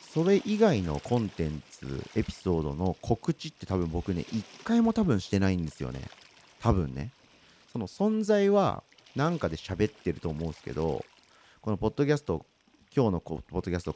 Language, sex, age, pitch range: Japanese, male, 40-59, 85-120 Hz